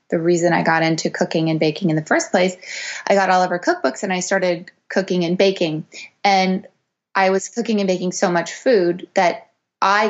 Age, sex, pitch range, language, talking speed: 20-39, female, 170-200 Hz, English, 210 wpm